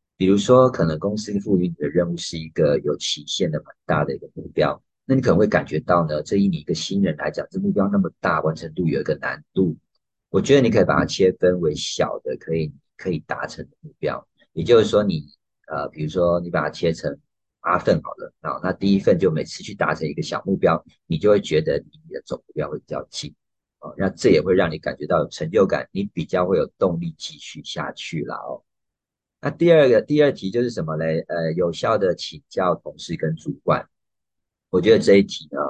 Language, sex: Chinese, male